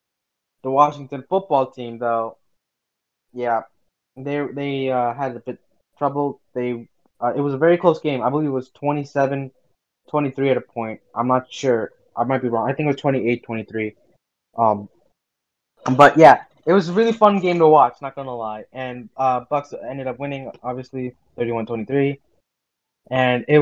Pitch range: 125-155 Hz